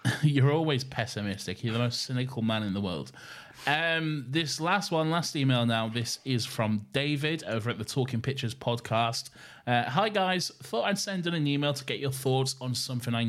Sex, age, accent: male, 30-49, British